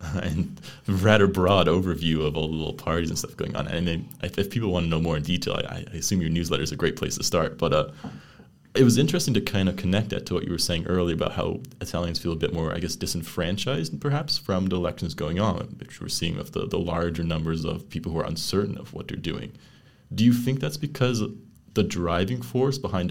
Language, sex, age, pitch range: English, male, 20-39, 85-110 Hz